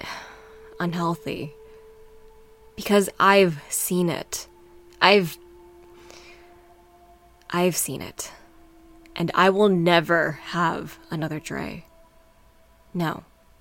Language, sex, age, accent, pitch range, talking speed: English, female, 20-39, American, 170-225 Hz, 75 wpm